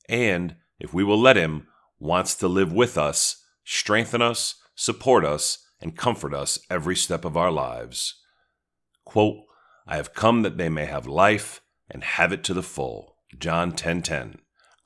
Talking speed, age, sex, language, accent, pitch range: 160 wpm, 40-59, male, English, American, 75-105 Hz